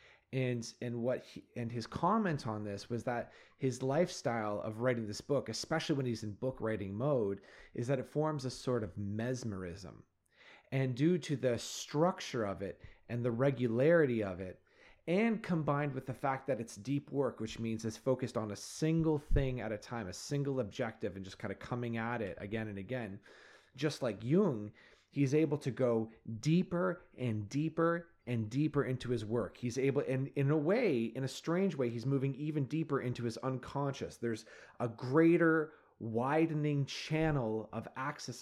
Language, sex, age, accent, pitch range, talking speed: English, male, 30-49, American, 110-140 Hz, 180 wpm